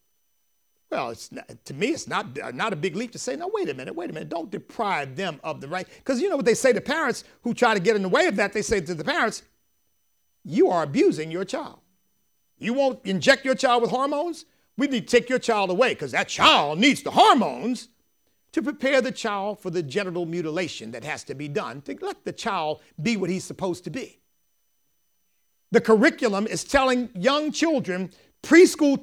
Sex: male